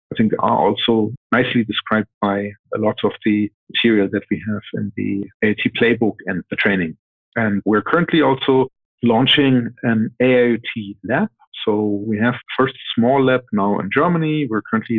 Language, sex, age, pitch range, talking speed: English, male, 50-69, 110-125 Hz, 170 wpm